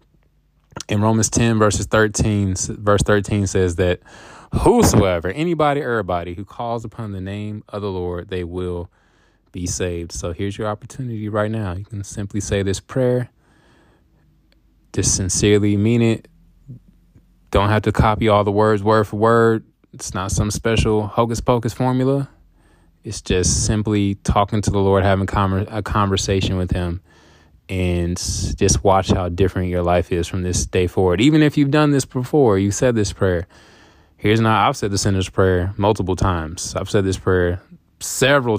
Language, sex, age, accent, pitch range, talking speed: English, male, 20-39, American, 90-115 Hz, 165 wpm